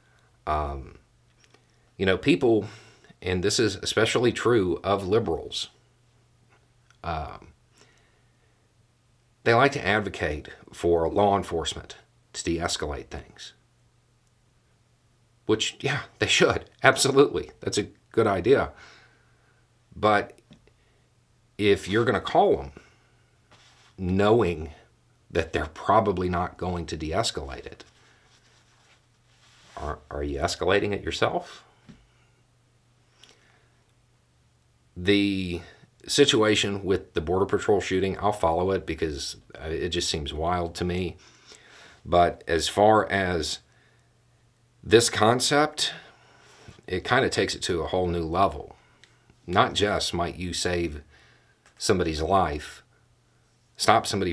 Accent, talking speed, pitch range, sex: American, 105 wpm, 90-120 Hz, male